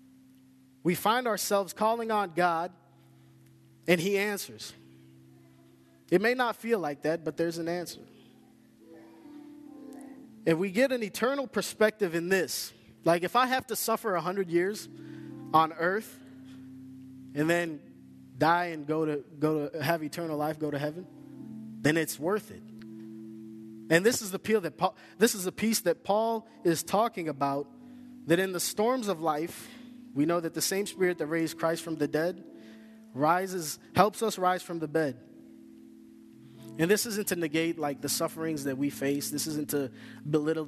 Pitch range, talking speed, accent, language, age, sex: 130-200 Hz, 165 wpm, American, English, 20-39, male